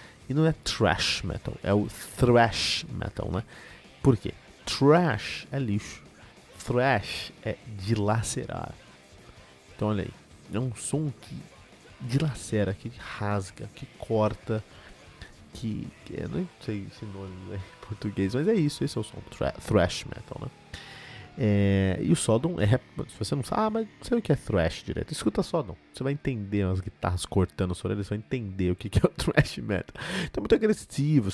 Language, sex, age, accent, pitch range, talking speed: Portuguese, male, 30-49, Brazilian, 100-130 Hz, 170 wpm